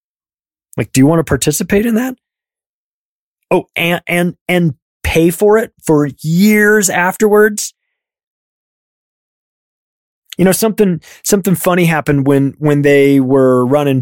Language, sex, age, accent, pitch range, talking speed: English, male, 20-39, American, 140-175 Hz, 125 wpm